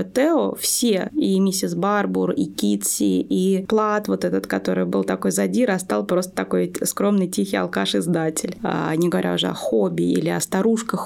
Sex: female